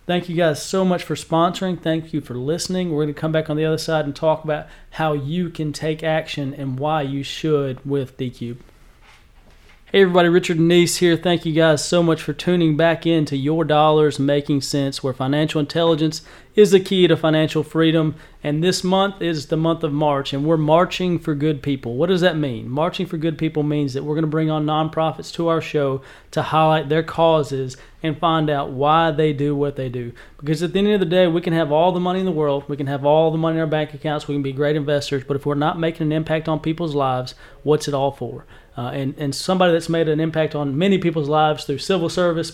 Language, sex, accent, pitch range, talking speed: English, male, American, 145-165 Hz, 235 wpm